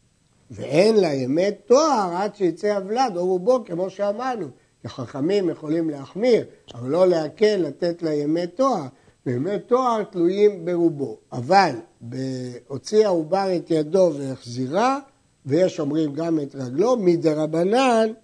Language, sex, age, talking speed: Hebrew, male, 60-79, 120 wpm